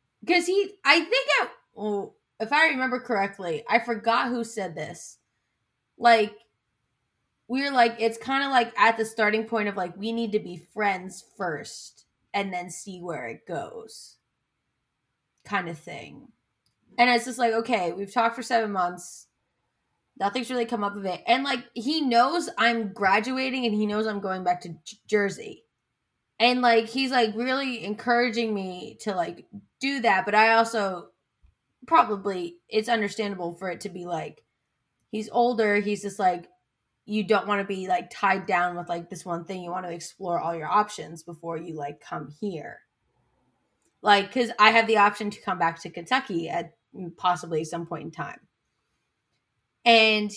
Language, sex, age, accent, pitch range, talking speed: English, female, 20-39, American, 175-230 Hz, 170 wpm